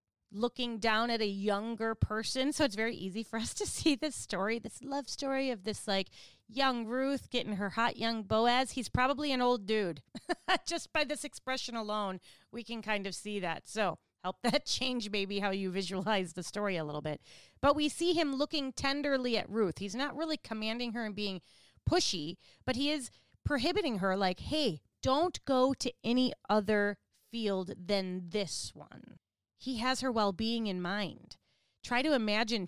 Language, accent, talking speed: English, American, 180 wpm